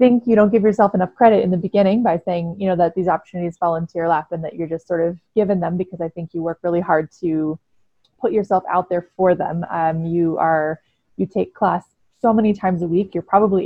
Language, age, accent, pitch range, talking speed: English, 20-39, American, 165-200 Hz, 240 wpm